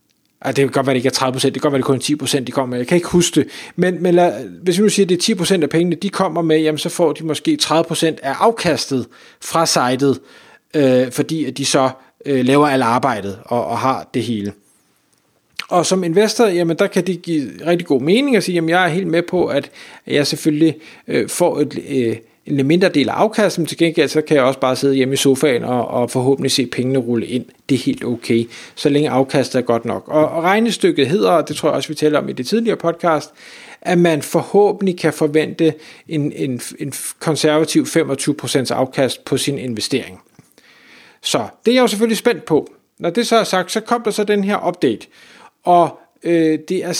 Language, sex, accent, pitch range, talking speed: Danish, male, native, 135-180 Hz, 225 wpm